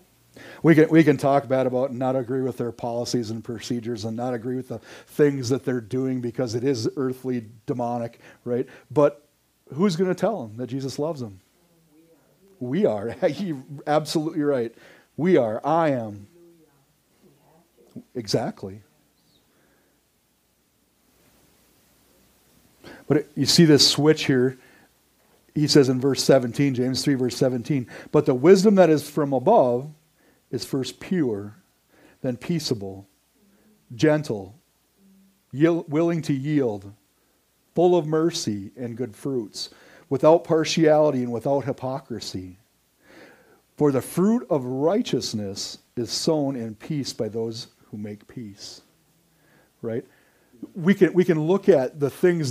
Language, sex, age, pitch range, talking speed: English, male, 40-59, 120-155 Hz, 135 wpm